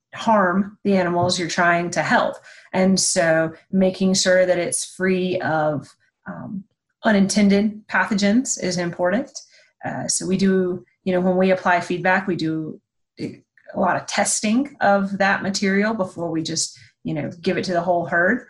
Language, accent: English, American